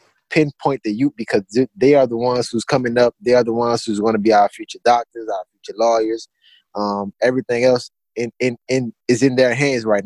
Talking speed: 215 wpm